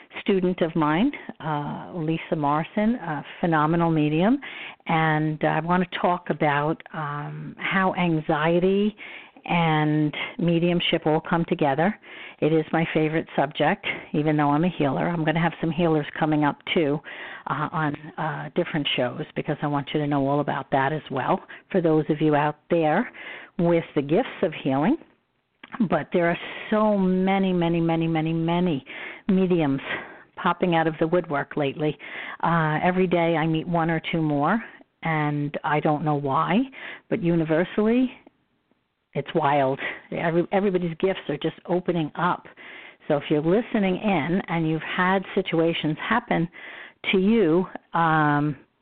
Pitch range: 155-180 Hz